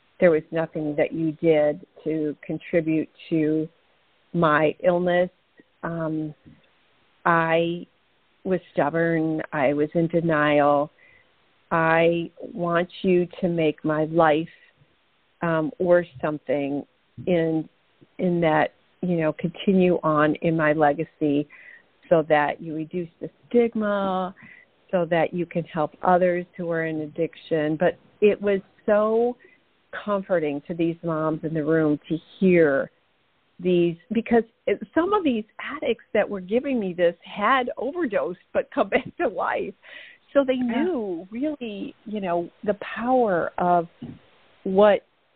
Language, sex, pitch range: English, female, 155-200 Hz